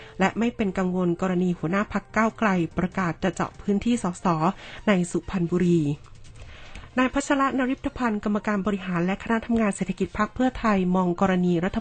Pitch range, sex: 175-215 Hz, female